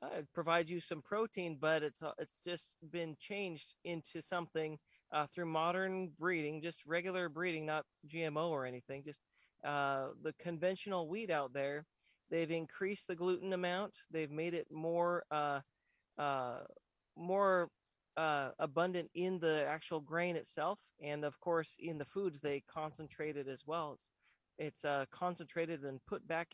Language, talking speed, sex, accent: English, 160 wpm, male, American